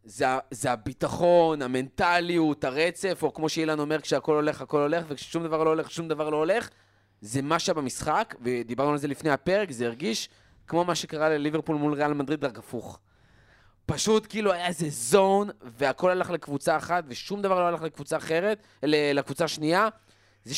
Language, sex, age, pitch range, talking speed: Hebrew, male, 20-39, 125-170 Hz, 170 wpm